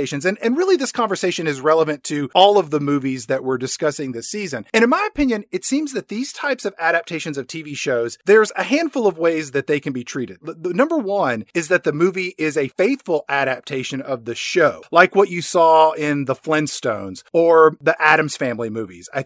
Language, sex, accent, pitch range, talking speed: English, male, American, 140-185 Hz, 215 wpm